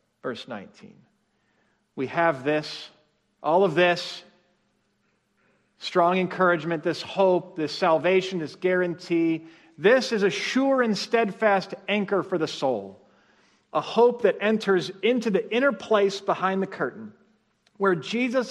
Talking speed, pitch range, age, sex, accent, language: 125 wpm, 150-195 Hz, 40-59, male, American, English